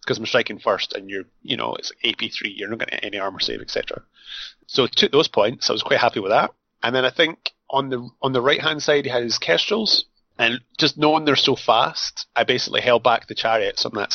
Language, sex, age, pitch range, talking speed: English, male, 30-49, 115-140 Hz, 255 wpm